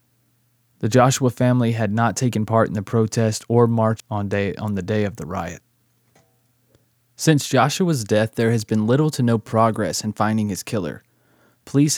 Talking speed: 170 wpm